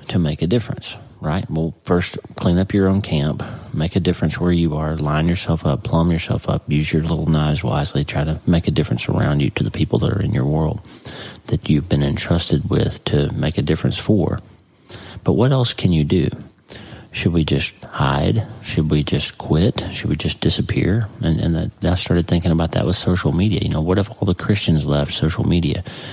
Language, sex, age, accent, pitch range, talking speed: English, male, 40-59, American, 80-100 Hz, 210 wpm